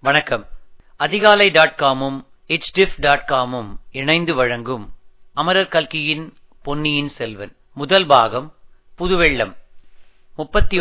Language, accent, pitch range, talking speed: Tamil, native, 140-195 Hz, 85 wpm